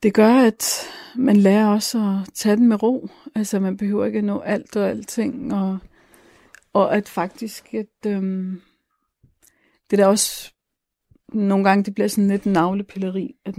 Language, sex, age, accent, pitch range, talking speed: Danish, female, 50-69, native, 190-220 Hz, 170 wpm